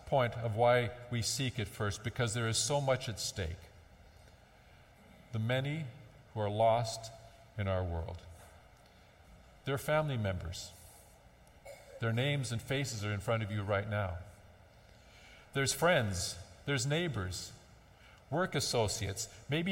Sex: male